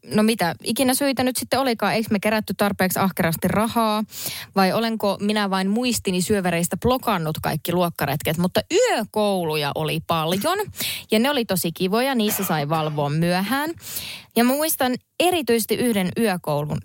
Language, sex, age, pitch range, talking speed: Finnish, female, 20-39, 175-225 Hz, 140 wpm